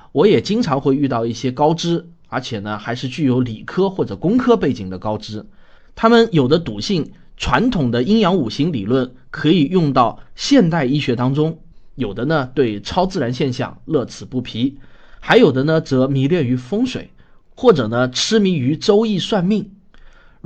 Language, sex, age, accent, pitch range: Chinese, male, 20-39, native, 120-170 Hz